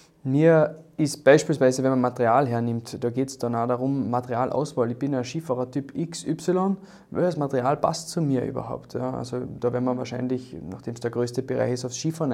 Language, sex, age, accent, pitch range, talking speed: German, male, 20-39, German, 130-155 Hz, 195 wpm